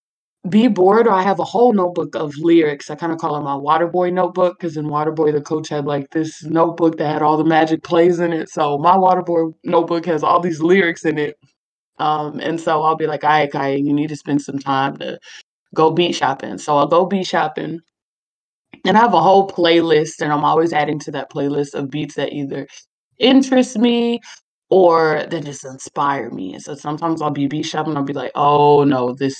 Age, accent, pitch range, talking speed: 20-39, American, 145-175 Hz, 215 wpm